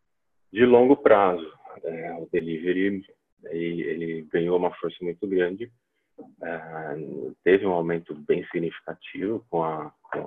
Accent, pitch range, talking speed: Brazilian, 85-95 Hz, 130 wpm